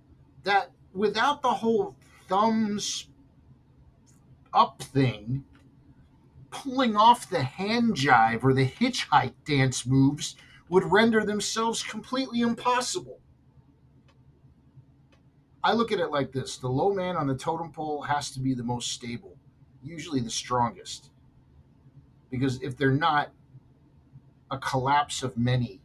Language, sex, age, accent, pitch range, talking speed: English, male, 50-69, American, 130-170 Hz, 120 wpm